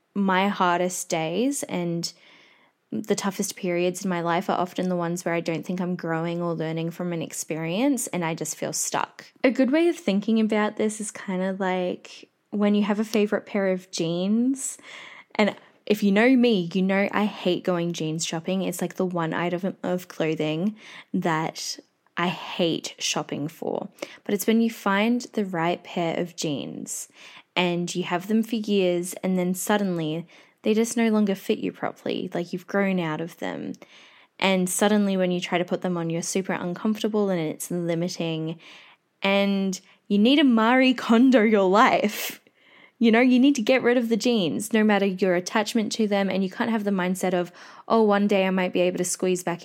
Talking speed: 195 wpm